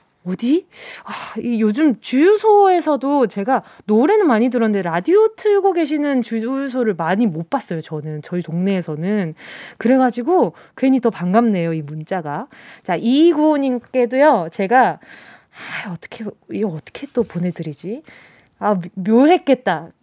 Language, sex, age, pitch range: Korean, female, 20-39, 210-315 Hz